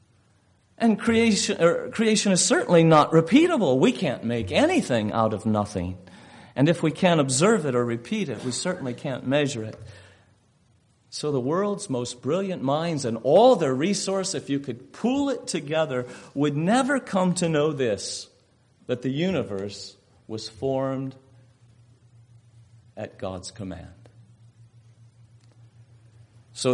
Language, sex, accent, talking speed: English, male, American, 130 wpm